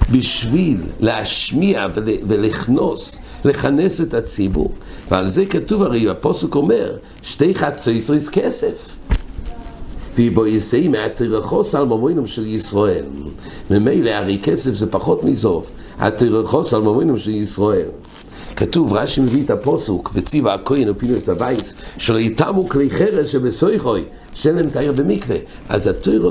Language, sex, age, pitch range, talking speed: English, male, 60-79, 100-140 Hz, 120 wpm